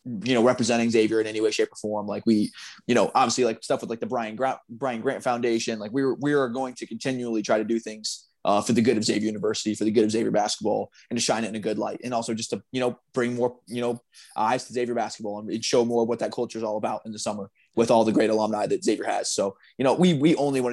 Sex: male